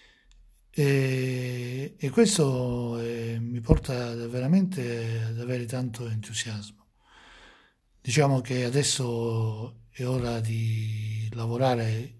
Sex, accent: male, native